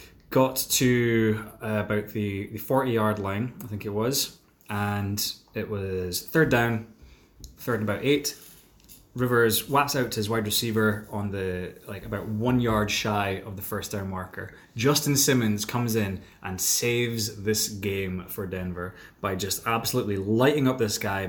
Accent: British